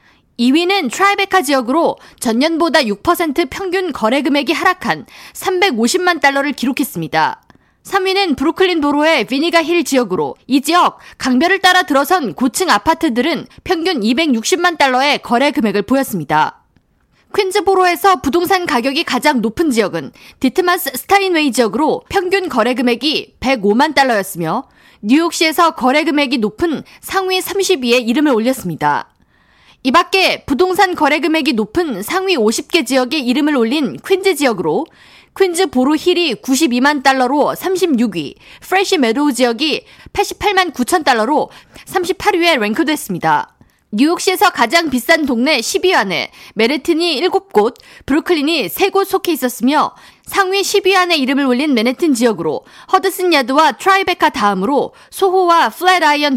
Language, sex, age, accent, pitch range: Korean, female, 20-39, native, 255-365 Hz